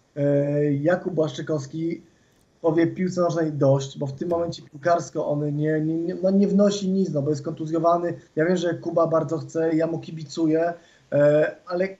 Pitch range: 160-180 Hz